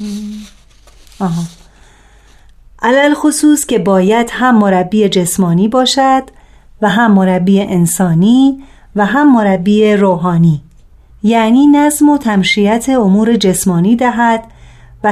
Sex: female